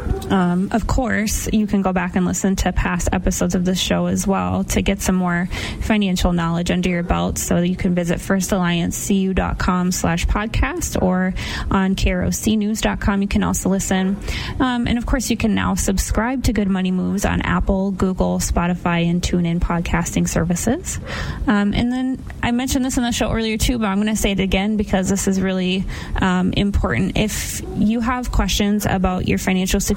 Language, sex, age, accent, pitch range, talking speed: English, female, 20-39, American, 175-210 Hz, 185 wpm